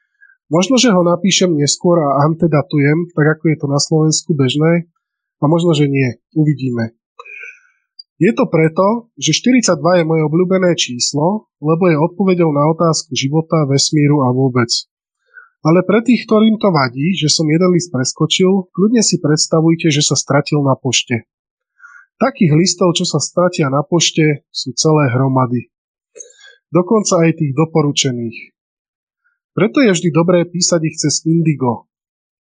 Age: 20-39